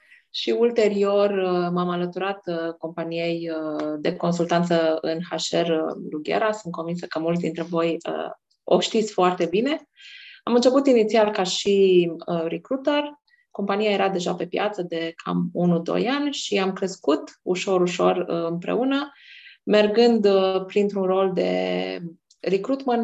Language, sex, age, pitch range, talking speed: Romanian, female, 20-39, 170-210 Hz, 115 wpm